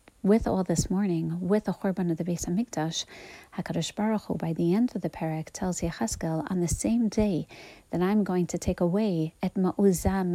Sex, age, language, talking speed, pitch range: female, 40-59, English, 195 wpm, 170-200 Hz